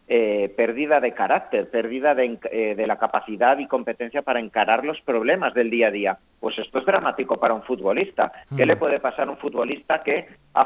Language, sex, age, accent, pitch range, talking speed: Spanish, male, 40-59, Spanish, 120-155 Hz, 205 wpm